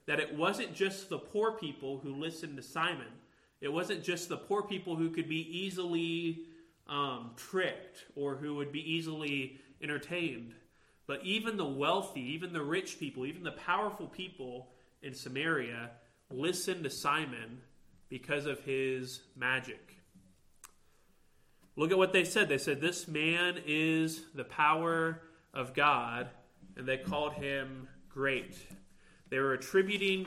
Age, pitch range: 30-49, 130-165 Hz